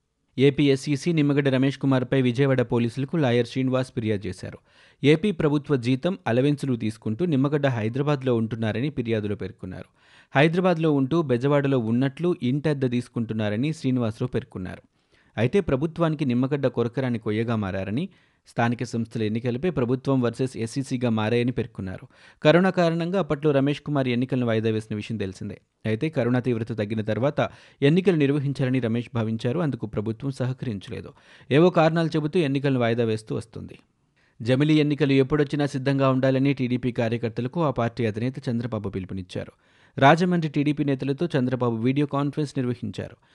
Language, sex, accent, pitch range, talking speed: Telugu, male, native, 115-145 Hz, 125 wpm